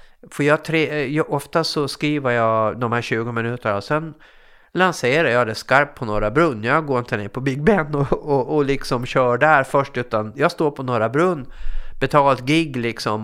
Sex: male